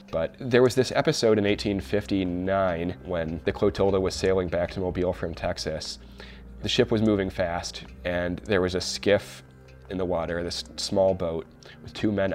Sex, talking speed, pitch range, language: male, 175 wpm, 80-95 Hz, English